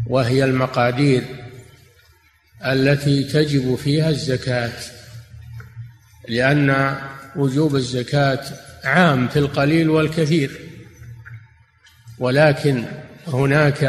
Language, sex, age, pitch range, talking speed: Arabic, male, 50-69, 125-155 Hz, 65 wpm